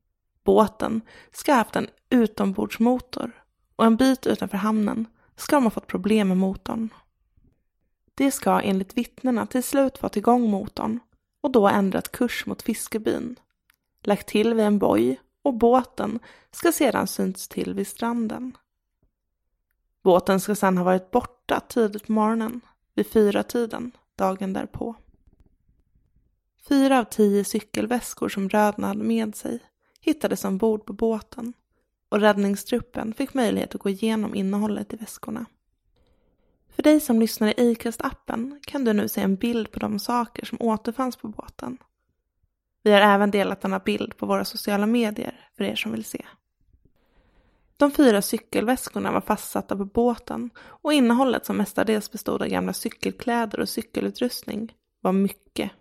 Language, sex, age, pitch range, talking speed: English, female, 20-39, 205-245 Hz, 145 wpm